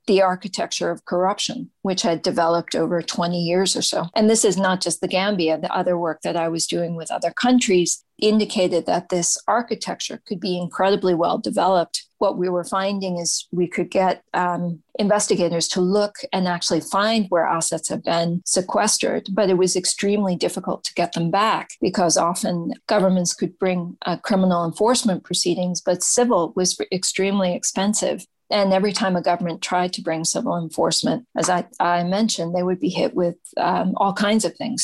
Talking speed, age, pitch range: 180 wpm, 40-59, 175-205 Hz